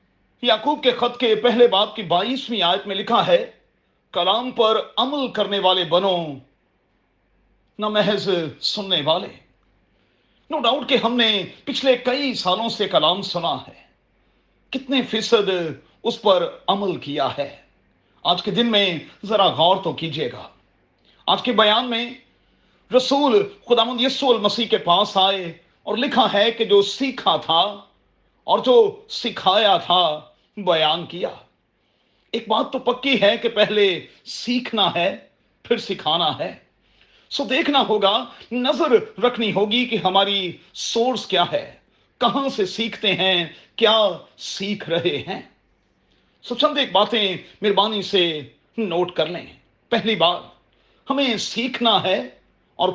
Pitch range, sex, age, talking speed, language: 190-245 Hz, male, 40-59, 140 wpm, Urdu